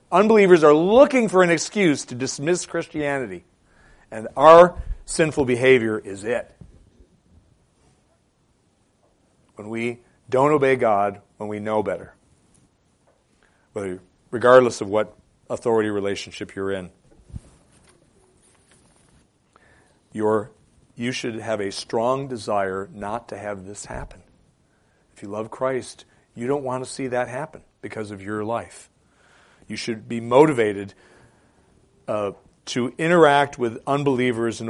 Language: English